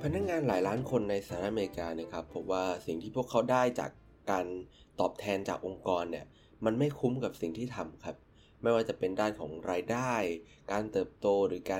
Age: 20-39